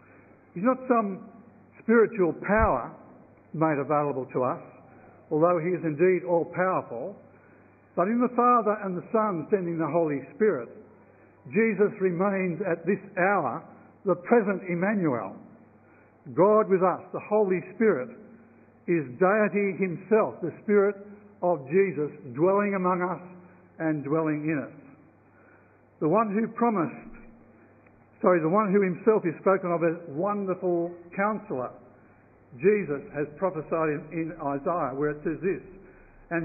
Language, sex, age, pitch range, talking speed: English, male, 60-79, 160-200 Hz, 130 wpm